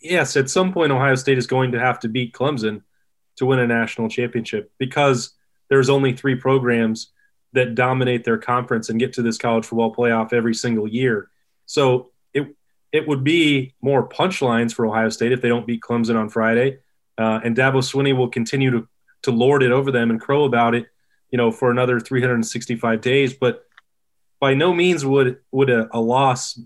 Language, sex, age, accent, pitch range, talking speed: English, male, 20-39, American, 120-135 Hz, 190 wpm